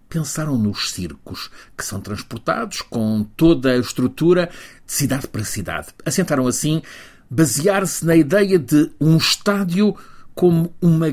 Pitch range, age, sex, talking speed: 110-165 Hz, 50-69, male, 130 wpm